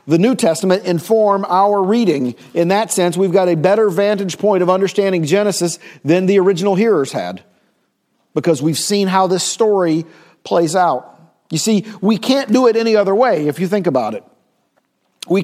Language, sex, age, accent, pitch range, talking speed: English, male, 50-69, American, 180-225 Hz, 180 wpm